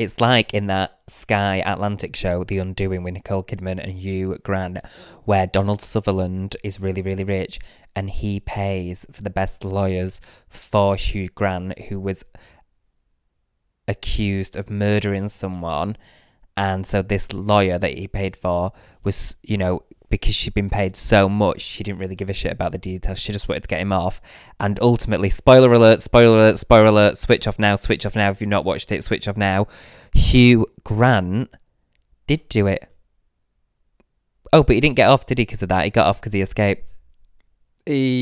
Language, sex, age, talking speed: English, male, 20-39, 180 wpm